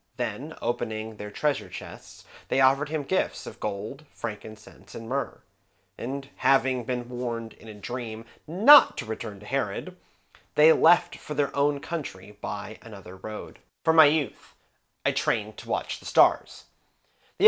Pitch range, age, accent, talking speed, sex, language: 115-155 Hz, 30-49, American, 155 wpm, male, English